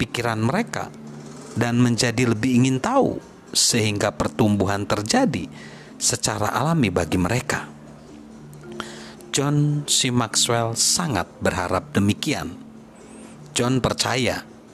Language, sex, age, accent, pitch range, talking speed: Indonesian, male, 40-59, native, 85-130 Hz, 90 wpm